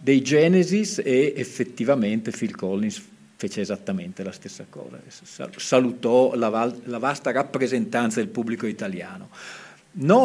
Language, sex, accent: Italian, male, native